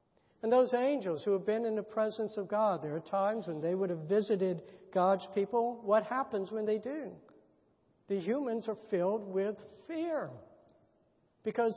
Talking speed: 170 wpm